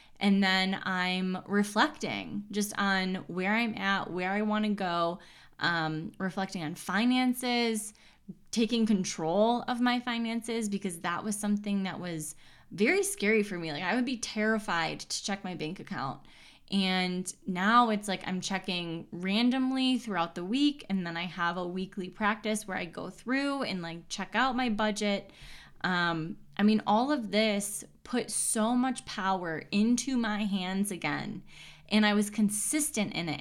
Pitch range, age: 185-235 Hz, 10-29